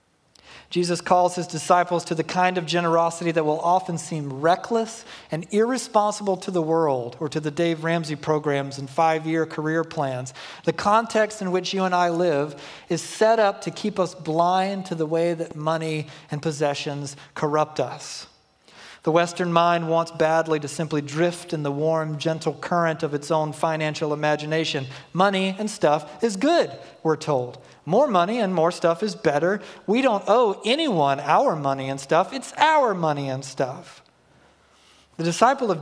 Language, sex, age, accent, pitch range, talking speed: English, male, 40-59, American, 155-190 Hz, 170 wpm